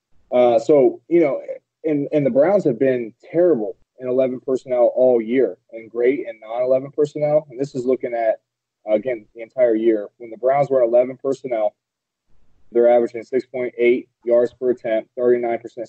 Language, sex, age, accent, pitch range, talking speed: English, male, 20-39, American, 115-135 Hz, 160 wpm